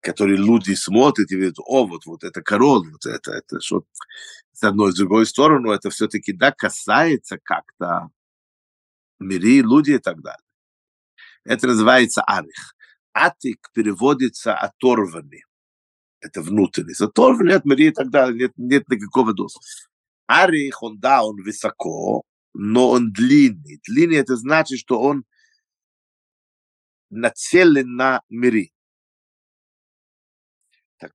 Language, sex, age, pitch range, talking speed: Russian, male, 50-69, 100-150 Hz, 125 wpm